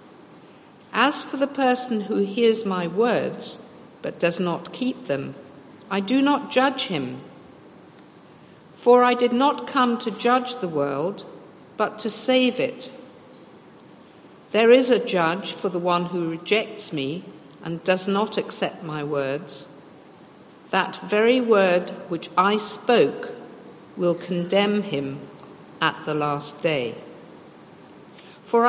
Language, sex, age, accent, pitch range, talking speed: English, female, 50-69, British, 175-235 Hz, 130 wpm